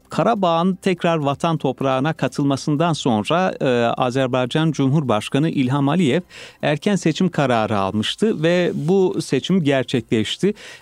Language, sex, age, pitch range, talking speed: Turkish, male, 40-59, 120-160 Hz, 100 wpm